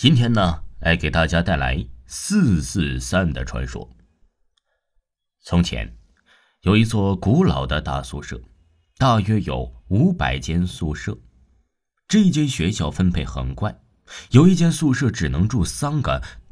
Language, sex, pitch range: Chinese, male, 70-105 Hz